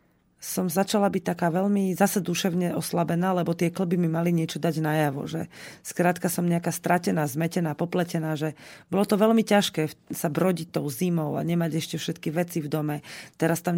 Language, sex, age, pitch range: Slovak, female, 30-49, 165-190 Hz